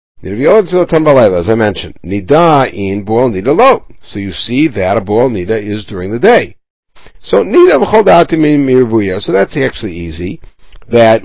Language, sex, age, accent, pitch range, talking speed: English, male, 60-79, American, 105-145 Hz, 155 wpm